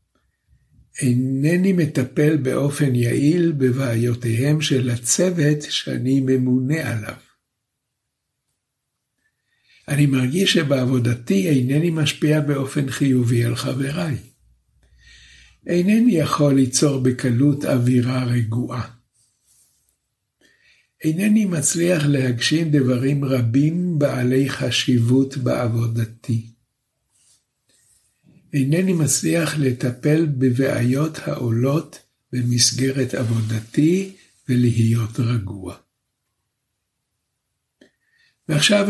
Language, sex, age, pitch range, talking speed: Hebrew, male, 60-79, 120-145 Hz, 65 wpm